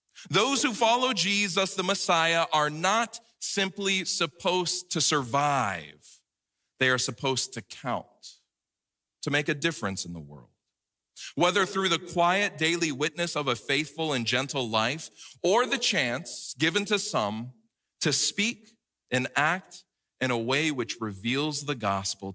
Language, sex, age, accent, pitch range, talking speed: English, male, 40-59, American, 100-160 Hz, 140 wpm